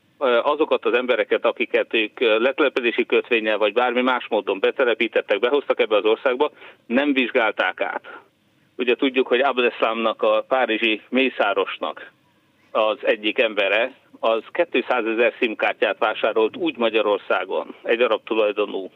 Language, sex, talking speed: Hungarian, male, 125 wpm